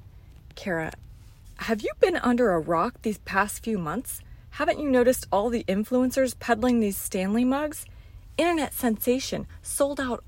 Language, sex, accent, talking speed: English, female, American, 145 wpm